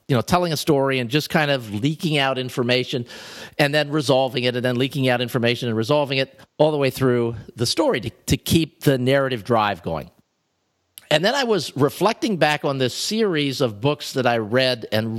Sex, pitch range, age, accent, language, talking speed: male, 115-150 Hz, 50-69, American, English, 205 wpm